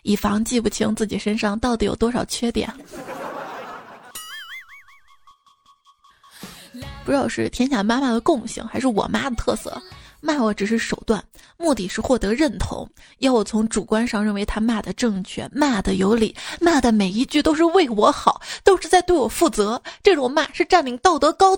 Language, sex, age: Chinese, female, 20-39